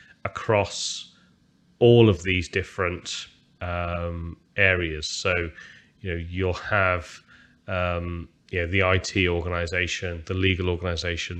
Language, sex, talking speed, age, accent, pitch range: English, male, 110 wpm, 30-49, British, 90-100 Hz